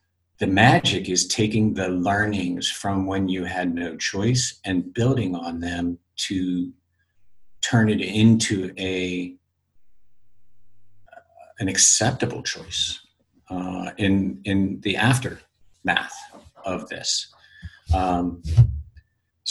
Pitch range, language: 90-105 Hz, English